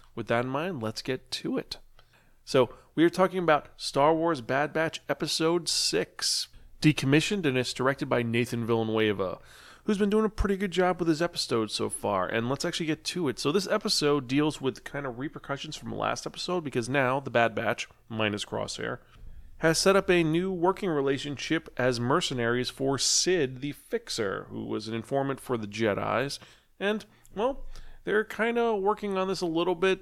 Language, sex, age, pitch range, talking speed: English, male, 30-49, 120-165 Hz, 190 wpm